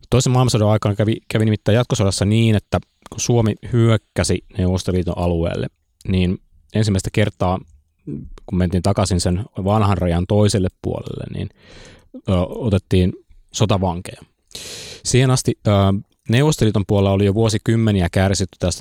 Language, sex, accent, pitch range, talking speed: Finnish, male, native, 95-110 Hz, 120 wpm